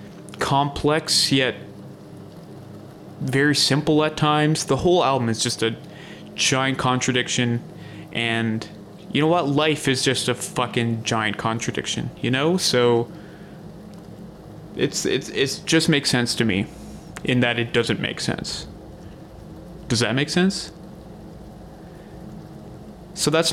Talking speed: 120 wpm